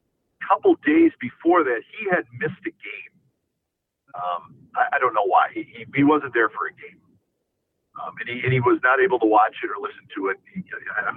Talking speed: 225 wpm